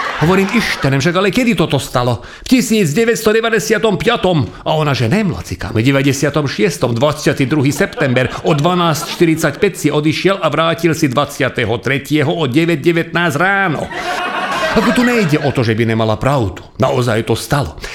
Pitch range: 130-190 Hz